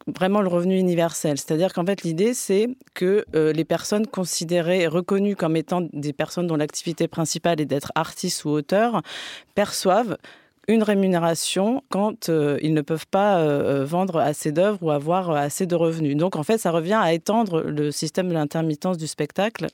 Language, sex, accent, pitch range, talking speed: French, female, French, 155-195 Hz, 175 wpm